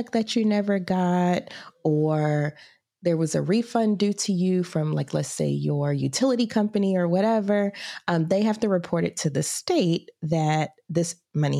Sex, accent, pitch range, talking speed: female, American, 150-190 Hz, 170 wpm